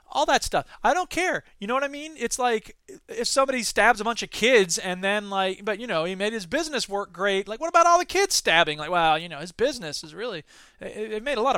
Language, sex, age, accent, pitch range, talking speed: English, male, 20-39, American, 175-235 Hz, 265 wpm